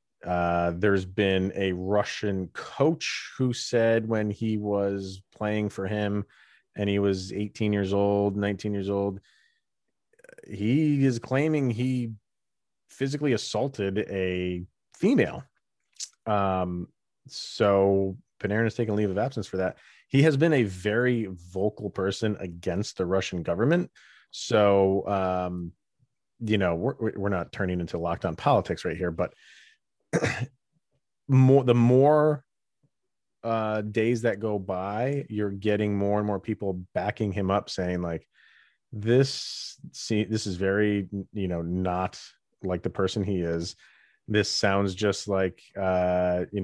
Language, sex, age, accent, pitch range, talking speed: English, male, 30-49, American, 95-110 Hz, 135 wpm